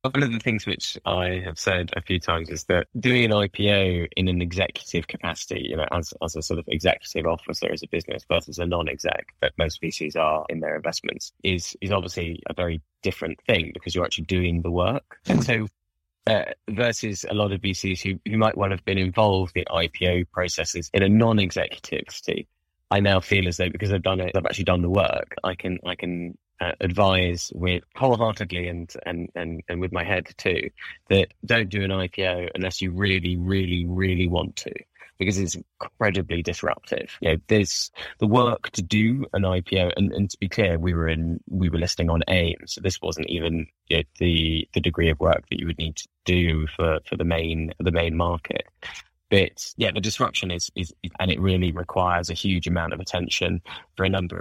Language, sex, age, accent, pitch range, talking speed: English, male, 20-39, British, 85-95 Hz, 205 wpm